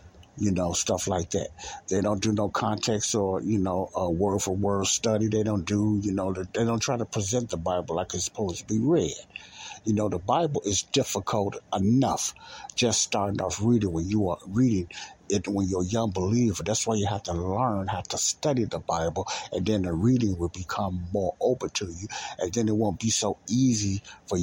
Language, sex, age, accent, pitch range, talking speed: English, male, 60-79, American, 95-115 Hz, 210 wpm